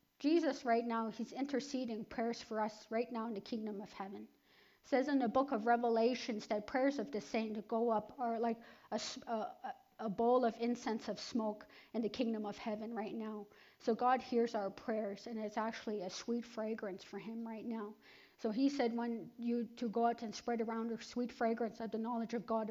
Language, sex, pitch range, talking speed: English, female, 220-245 Hz, 210 wpm